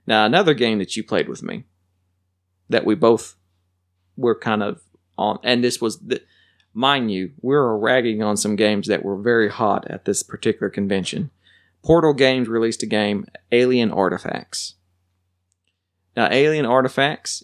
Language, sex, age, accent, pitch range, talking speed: English, male, 40-59, American, 90-120 Hz, 155 wpm